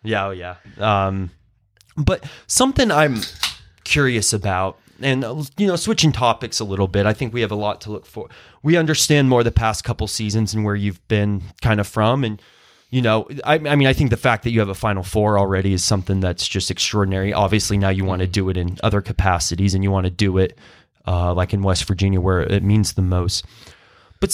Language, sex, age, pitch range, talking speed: English, male, 20-39, 95-120 Hz, 220 wpm